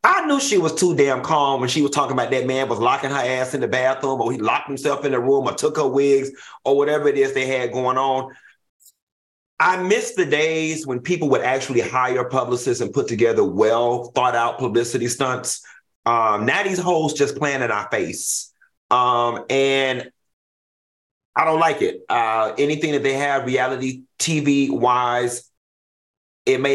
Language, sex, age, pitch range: English, male, 30-49, 130-195 Hz